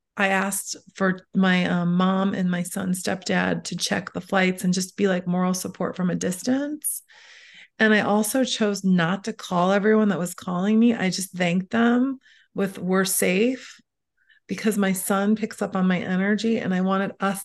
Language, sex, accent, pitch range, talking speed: English, female, American, 190-225 Hz, 185 wpm